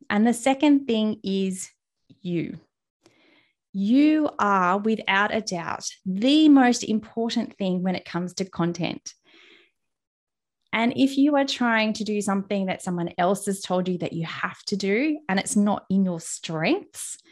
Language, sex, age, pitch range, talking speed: English, female, 20-39, 180-230 Hz, 155 wpm